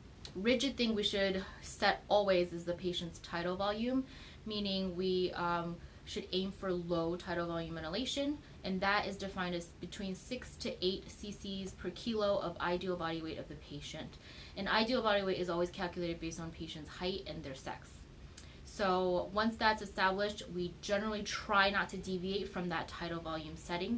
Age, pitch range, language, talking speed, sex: 20-39, 165-200 Hz, English, 175 wpm, female